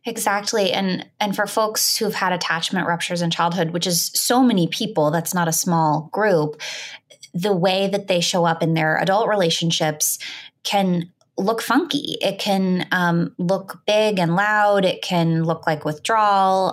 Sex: female